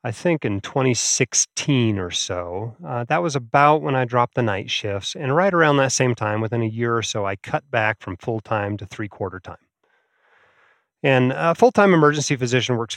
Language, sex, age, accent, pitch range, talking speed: English, male, 30-49, American, 105-130 Hz, 190 wpm